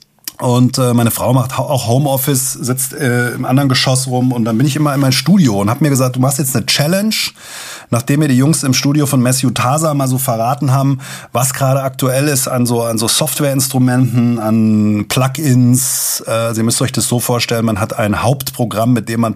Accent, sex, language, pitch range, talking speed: German, male, German, 120-145 Hz, 205 wpm